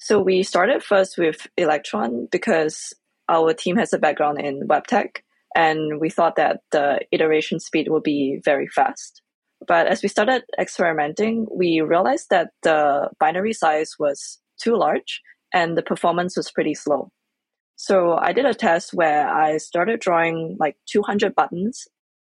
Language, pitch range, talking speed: English, 160-200 Hz, 155 wpm